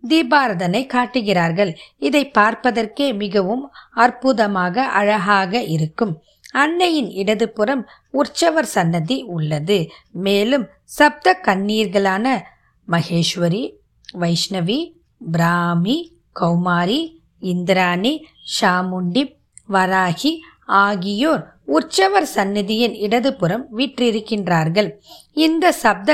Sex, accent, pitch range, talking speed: female, native, 190-265 Hz, 70 wpm